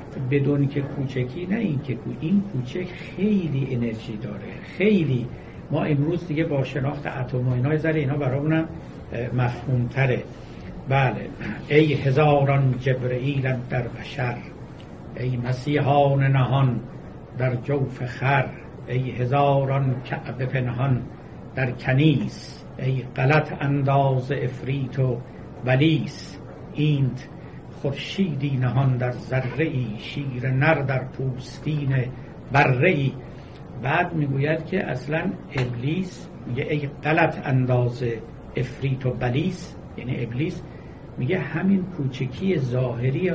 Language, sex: Persian, male